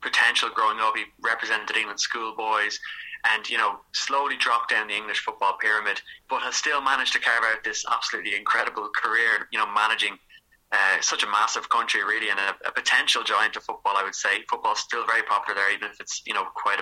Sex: male